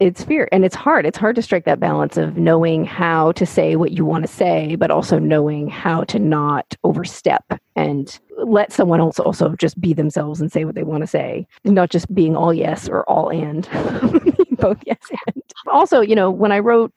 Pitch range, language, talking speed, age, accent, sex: 150-190 Hz, English, 210 wpm, 40-59, American, female